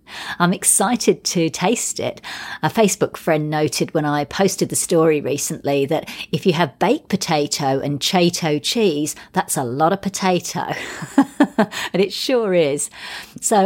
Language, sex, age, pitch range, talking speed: English, female, 50-69, 145-200 Hz, 150 wpm